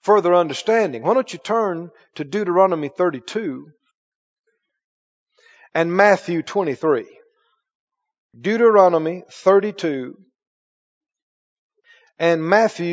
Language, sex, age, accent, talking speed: English, male, 50-69, American, 75 wpm